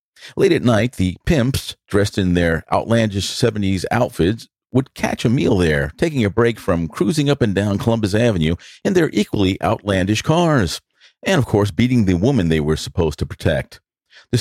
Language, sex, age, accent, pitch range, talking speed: English, male, 50-69, American, 90-130 Hz, 180 wpm